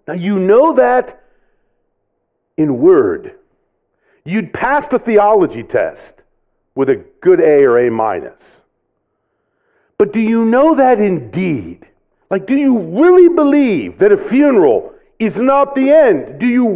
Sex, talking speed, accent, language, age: male, 135 wpm, American, English, 50-69